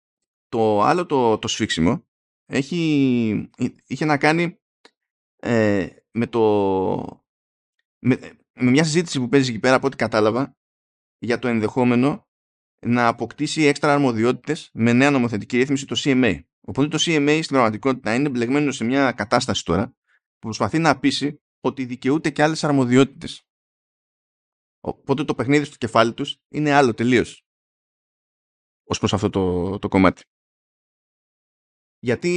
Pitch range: 105-135 Hz